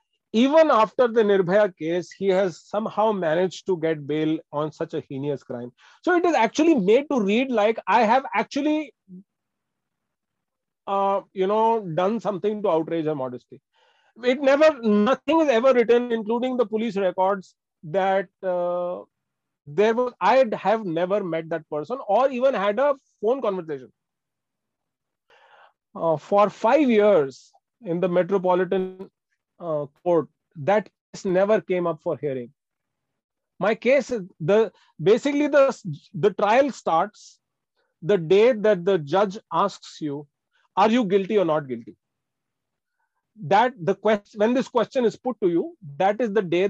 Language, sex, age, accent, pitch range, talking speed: English, male, 40-59, Indian, 175-240 Hz, 145 wpm